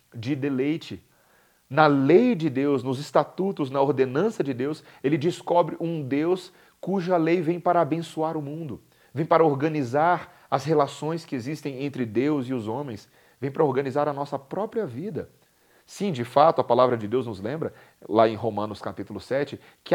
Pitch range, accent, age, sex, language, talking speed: 120-155 Hz, Brazilian, 40-59, male, Portuguese, 170 wpm